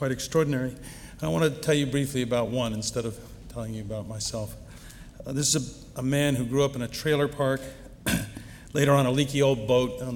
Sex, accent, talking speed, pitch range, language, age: male, American, 215 wpm, 115-140 Hz, English, 50-69